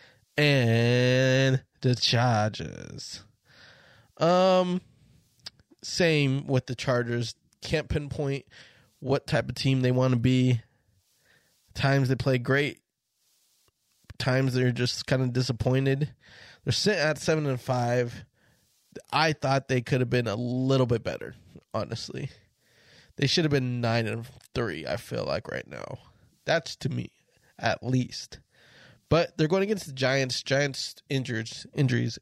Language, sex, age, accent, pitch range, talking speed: English, male, 20-39, American, 120-140 Hz, 130 wpm